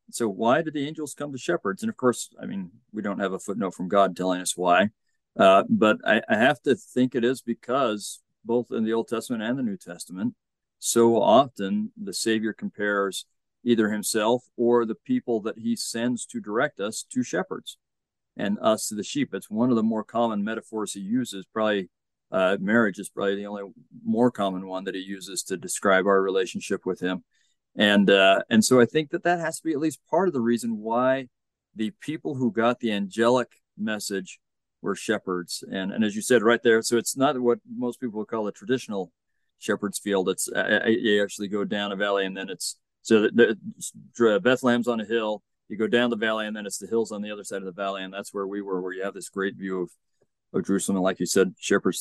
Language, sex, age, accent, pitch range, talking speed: English, male, 50-69, American, 100-120 Hz, 220 wpm